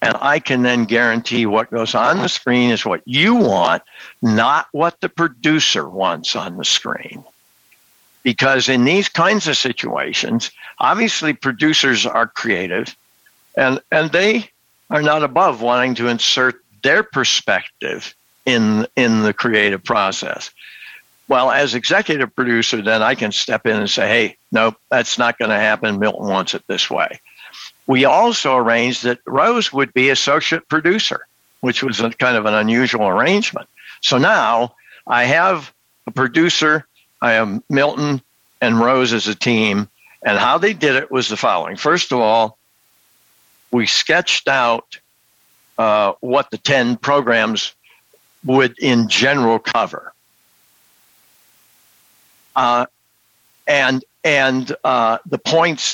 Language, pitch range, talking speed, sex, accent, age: English, 115-150 Hz, 140 wpm, male, American, 60-79